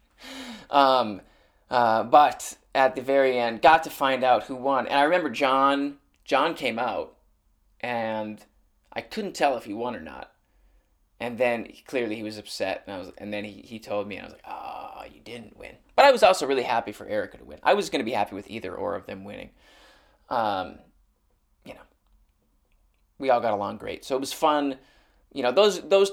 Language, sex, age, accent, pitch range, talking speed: English, male, 20-39, American, 105-140 Hz, 205 wpm